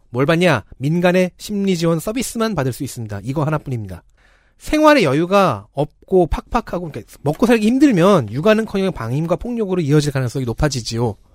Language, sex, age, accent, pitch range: Korean, male, 30-49, native, 125-185 Hz